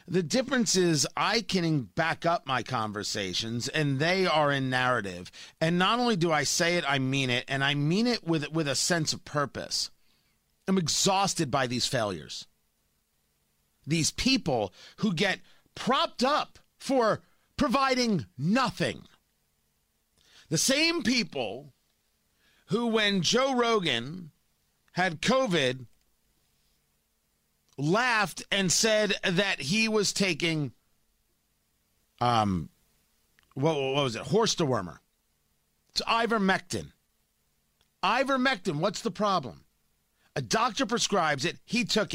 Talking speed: 120 wpm